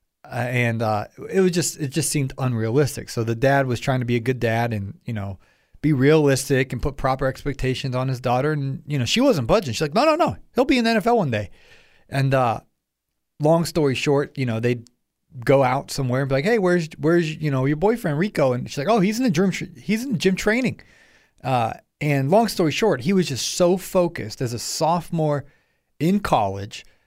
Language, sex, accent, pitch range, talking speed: English, male, American, 120-160 Hz, 220 wpm